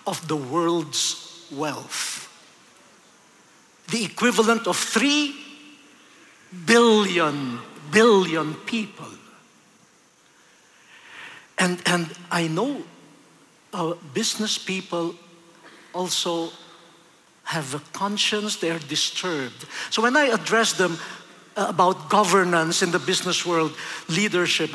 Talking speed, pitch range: 90 wpm, 165-225 Hz